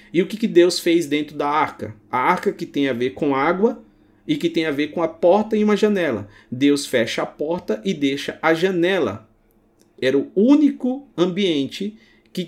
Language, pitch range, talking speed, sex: Portuguese, 140-200 Hz, 190 wpm, male